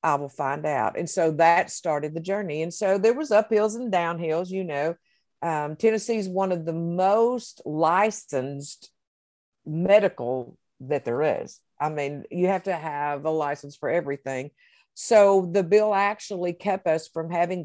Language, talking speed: English, 165 wpm